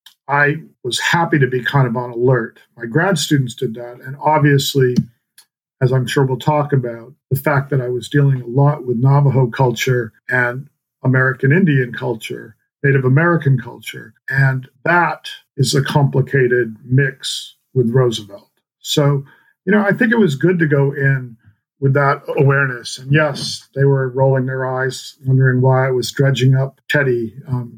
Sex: male